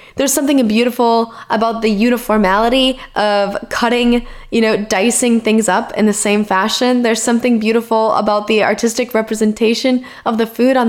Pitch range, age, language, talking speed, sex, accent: 215-285 Hz, 10-29, English, 155 wpm, female, American